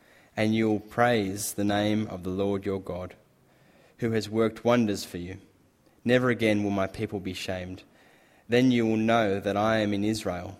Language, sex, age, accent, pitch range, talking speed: English, male, 10-29, Australian, 95-115 Hz, 185 wpm